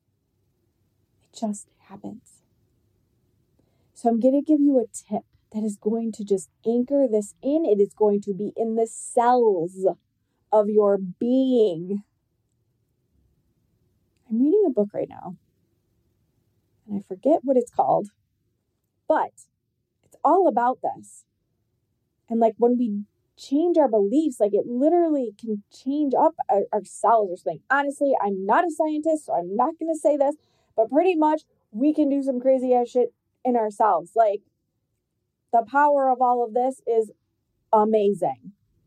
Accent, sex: American, female